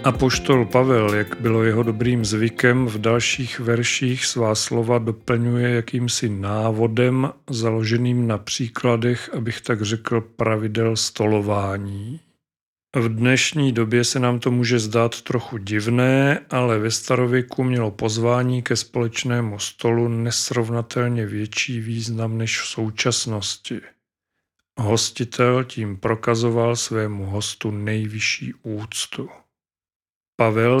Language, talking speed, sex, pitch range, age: Czech, 110 wpm, male, 110-125 Hz, 40-59